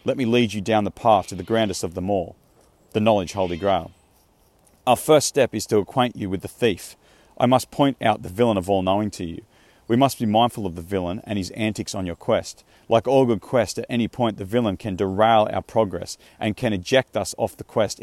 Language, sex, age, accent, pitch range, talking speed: English, male, 40-59, Australian, 95-120 Hz, 235 wpm